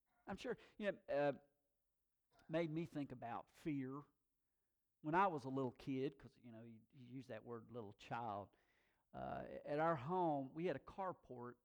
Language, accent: English, American